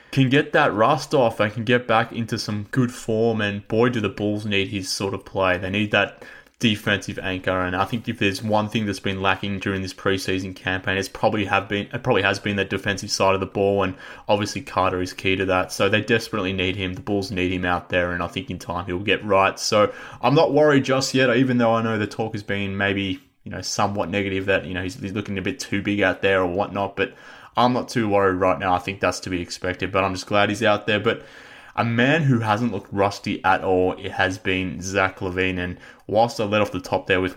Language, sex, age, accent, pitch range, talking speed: English, male, 20-39, Australian, 95-110 Hz, 255 wpm